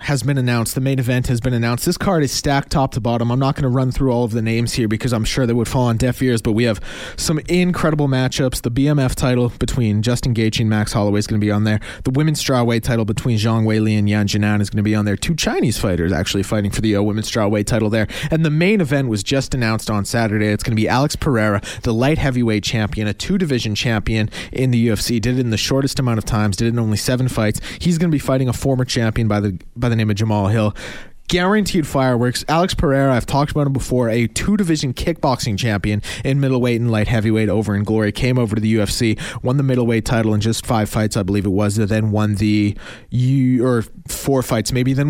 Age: 30-49